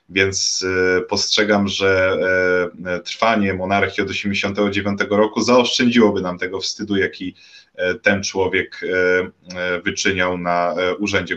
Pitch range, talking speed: 95-105 Hz, 95 wpm